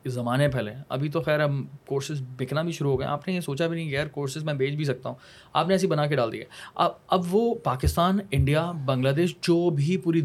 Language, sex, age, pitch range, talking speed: Urdu, male, 20-39, 125-155 Hz, 265 wpm